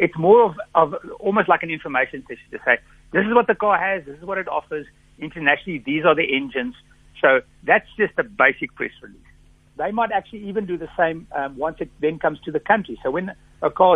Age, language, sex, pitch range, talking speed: 60-79, English, male, 140-195 Hz, 230 wpm